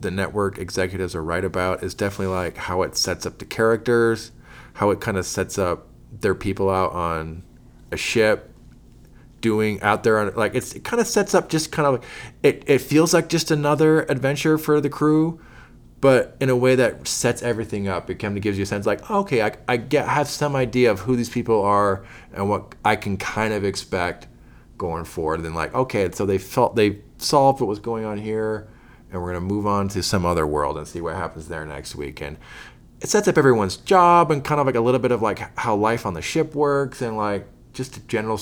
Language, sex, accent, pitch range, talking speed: English, male, American, 95-130 Hz, 225 wpm